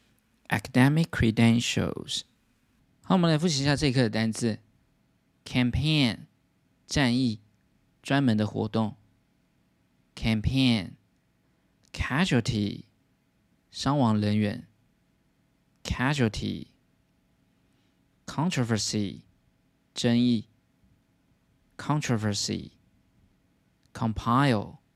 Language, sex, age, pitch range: Chinese, male, 20-39, 105-130 Hz